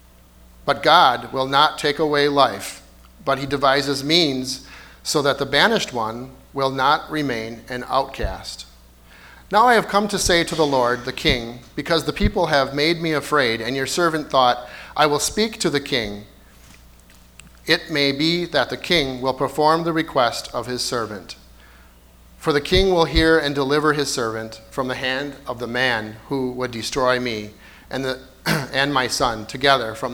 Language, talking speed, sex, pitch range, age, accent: English, 175 wpm, male, 105-150 Hz, 40-59, American